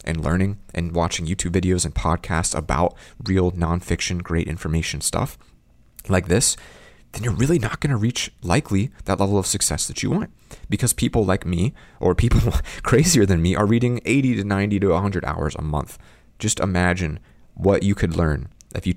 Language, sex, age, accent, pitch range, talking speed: English, male, 30-49, American, 80-100 Hz, 185 wpm